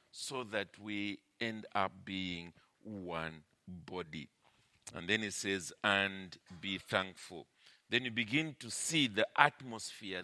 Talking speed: 130 wpm